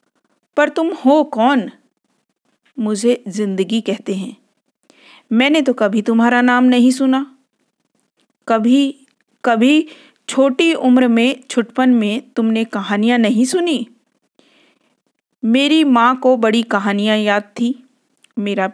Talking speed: 110 wpm